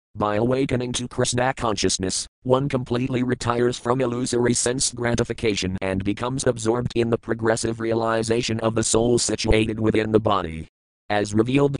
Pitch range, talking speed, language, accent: 110-120 Hz, 140 wpm, English, American